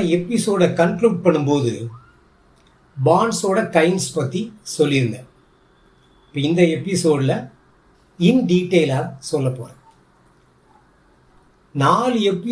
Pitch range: 145-190 Hz